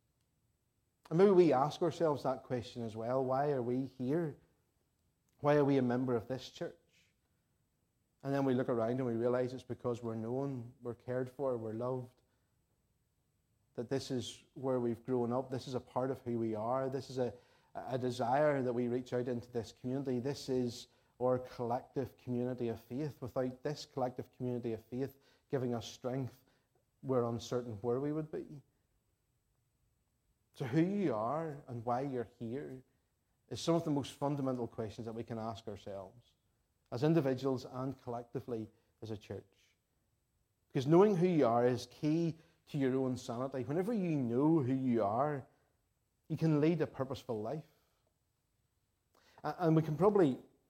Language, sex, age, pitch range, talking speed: English, male, 30-49, 120-145 Hz, 165 wpm